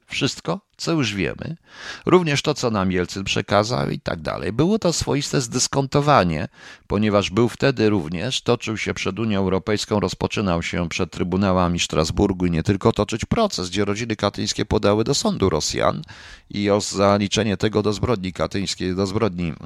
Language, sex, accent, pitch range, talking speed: Polish, male, native, 95-135 Hz, 160 wpm